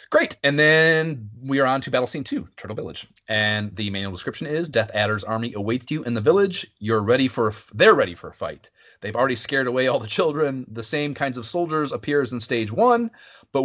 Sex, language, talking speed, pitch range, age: male, English, 220 wpm, 105-140 Hz, 30-49